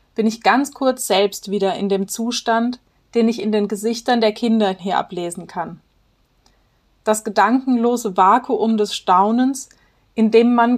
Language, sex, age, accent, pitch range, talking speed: German, female, 30-49, German, 200-235 Hz, 150 wpm